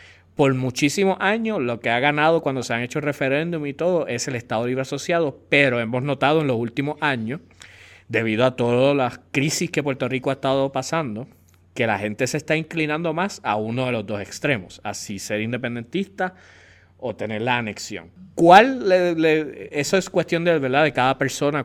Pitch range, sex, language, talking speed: 110-150 Hz, male, English, 190 wpm